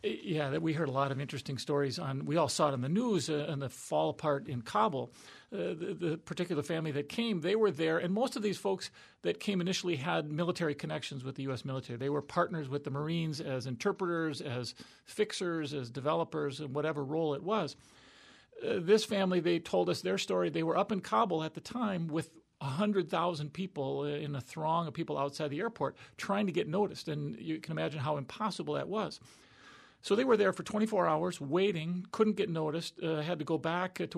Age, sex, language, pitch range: 40-59, male, English, 150-190 Hz